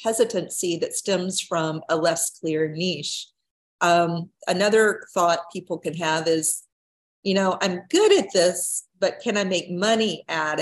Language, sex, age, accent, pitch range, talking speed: English, female, 40-59, American, 160-210 Hz, 155 wpm